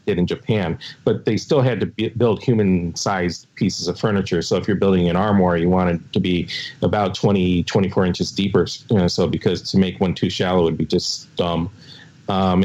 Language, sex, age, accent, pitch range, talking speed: English, male, 40-59, American, 85-100 Hz, 215 wpm